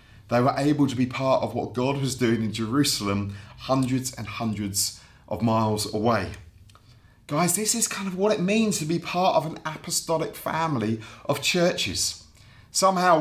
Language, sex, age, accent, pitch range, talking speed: English, male, 30-49, British, 120-160 Hz, 170 wpm